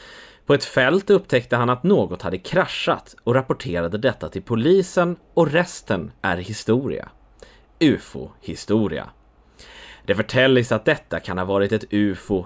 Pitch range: 100-140 Hz